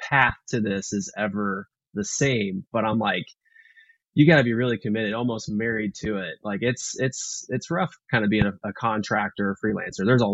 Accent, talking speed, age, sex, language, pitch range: American, 205 wpm, 20-39, male, English, 110-140 Hz